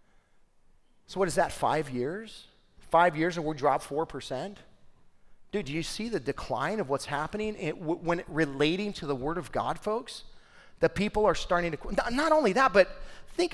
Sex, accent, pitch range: male, American, 140-180 Hz